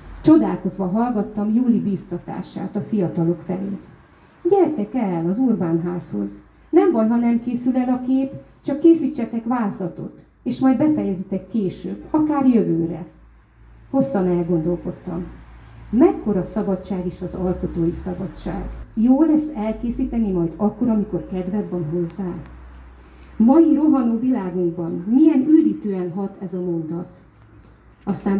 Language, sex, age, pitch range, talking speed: Hungarian, female, 30-49, 180-230 Hz, 115 wpm